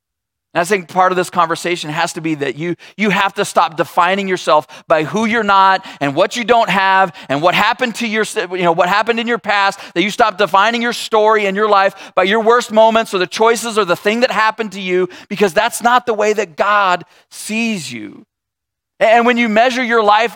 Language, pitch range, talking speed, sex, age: English, 180-220 Hz, 225 wpm, male, 30-49